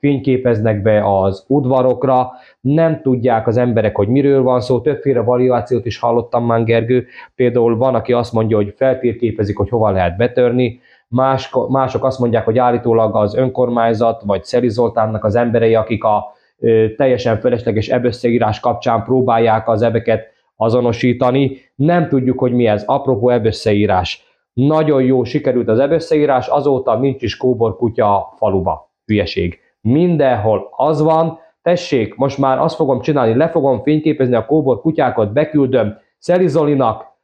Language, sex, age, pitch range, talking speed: Hungarian, male, 20-39, 115-135 Hz, 140 wpm